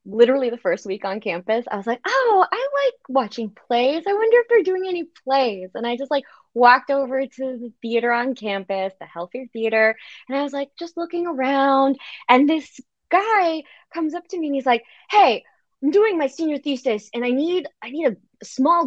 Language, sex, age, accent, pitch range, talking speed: English, female, 20-39, American, 195-315 Hz, 205 wpm